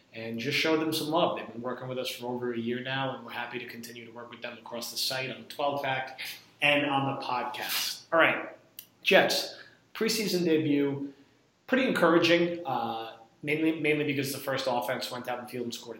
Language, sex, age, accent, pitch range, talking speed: English, male, 30-49, American, 120-140 Hz, 210 wpm